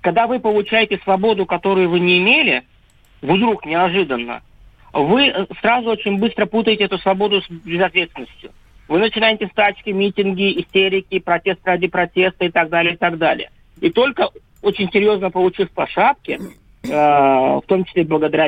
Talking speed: 145 wpm